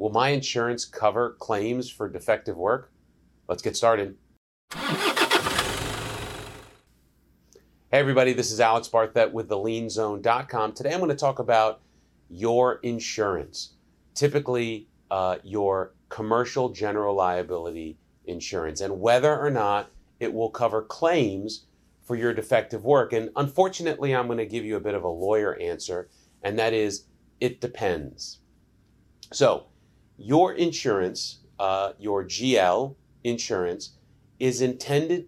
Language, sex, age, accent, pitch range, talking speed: English, male, 30-49, American, 95-130 Hz, 125 wpm